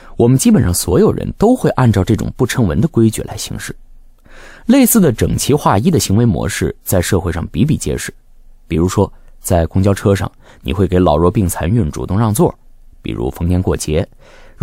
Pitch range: 90-135 Hz